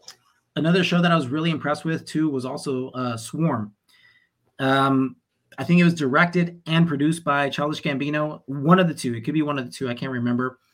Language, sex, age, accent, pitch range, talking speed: English, male, 20-39, American, 125-150 Hz, 210 wpm